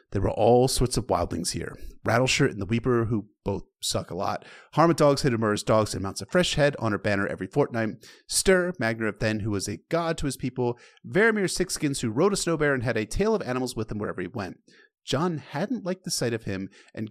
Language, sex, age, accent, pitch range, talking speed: English, male, 30-49, American, 100-140 Hz, 235 wpm